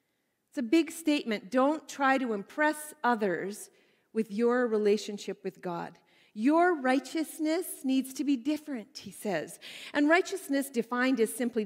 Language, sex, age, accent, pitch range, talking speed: English, female, 40-59, American, 210-285 Hz, 135 wpm